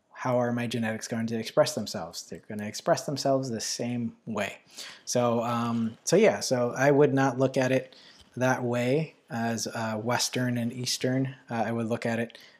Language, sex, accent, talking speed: English, male, American, 185 wpm